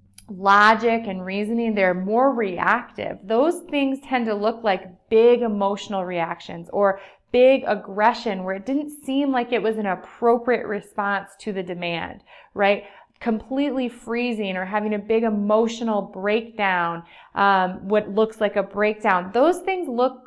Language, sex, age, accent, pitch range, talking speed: English, female, 20-39, American, 195-245 Hz, 145 wpm